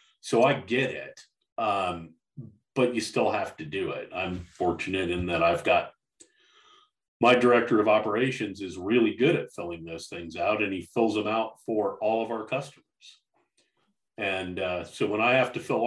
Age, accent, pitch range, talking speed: 40-59, American, 100-160 Hz, 180 wpm